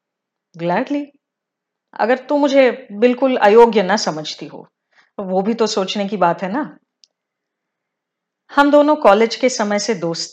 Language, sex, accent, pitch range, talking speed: Hindi, female, native, 185-260 Hz, 145 wpm